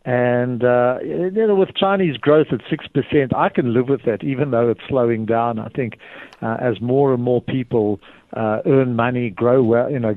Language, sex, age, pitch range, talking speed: English, male, 60-79, 115-135 Hz, 200 wpm